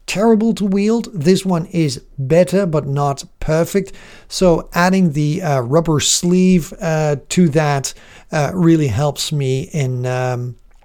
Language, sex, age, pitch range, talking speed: English, male, 50-69, 150-195 Hz, 140 wpm